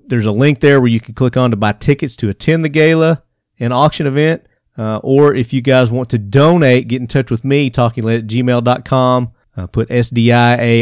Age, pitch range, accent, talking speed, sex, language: 40-59, 110-135 Hz, American, 210 wpm, male, English